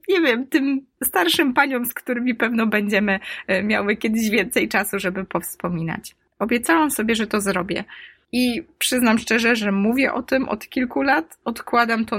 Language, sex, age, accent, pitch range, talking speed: Polish, female, 20-39, native, 195-250 Hz, 160 wpm